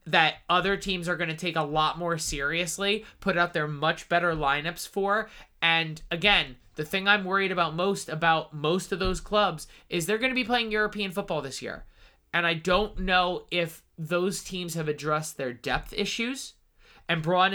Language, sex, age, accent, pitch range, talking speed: English, male, 20-39, American, 155-190 Hz, 190 wpm